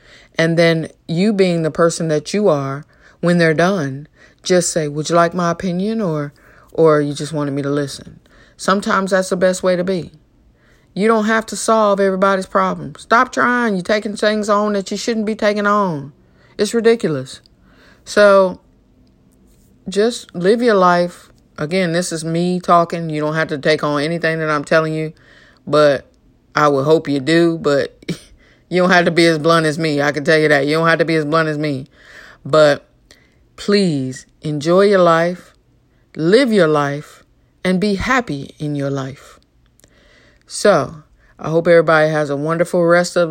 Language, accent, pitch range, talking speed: English, American, 155-200 Hz, 180 wpm